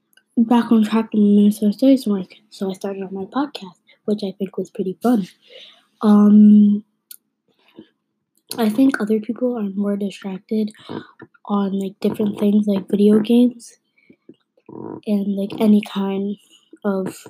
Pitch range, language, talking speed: 195-215 Hz, English, 140 wpm